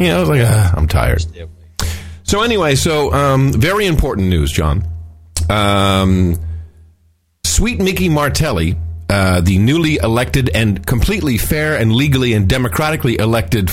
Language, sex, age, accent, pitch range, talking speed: English, male, 50-69, American, 85-120 Hz, 140 wpm